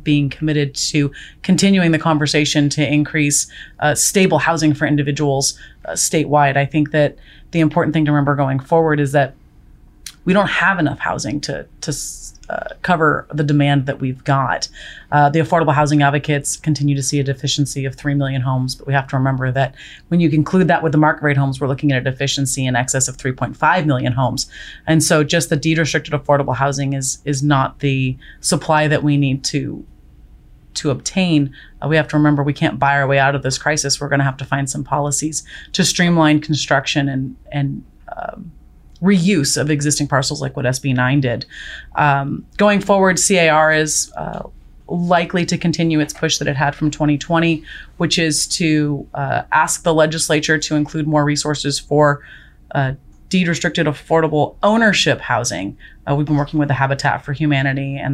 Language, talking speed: English, 185 wpm